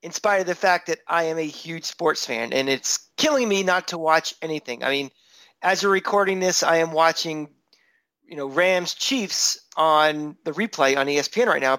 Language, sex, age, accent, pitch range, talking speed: English, male, 40-59, American, 155-200 Hz, 205 wpm